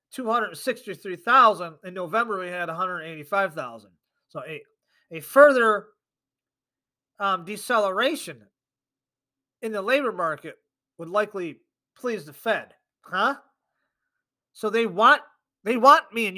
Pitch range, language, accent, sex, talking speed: 155-215 Hz, English, American, male, 140 wpm